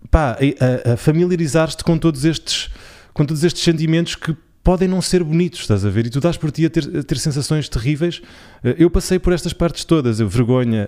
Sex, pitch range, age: male, 115-145 Hz, 20-39